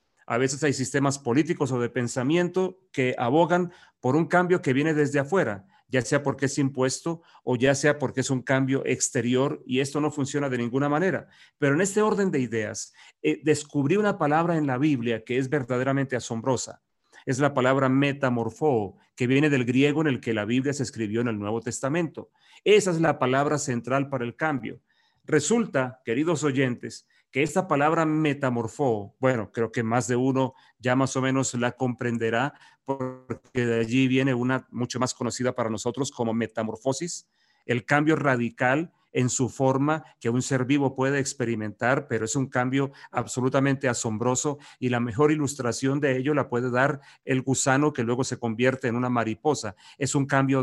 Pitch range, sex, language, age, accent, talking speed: 125-150 Hz, male, Spanish, 40-59, Mexican, 180 wpm